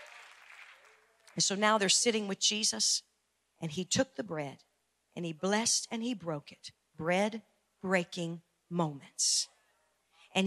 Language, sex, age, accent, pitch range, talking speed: English, female, 50-69, American, 165-225 Hz, 130 wpm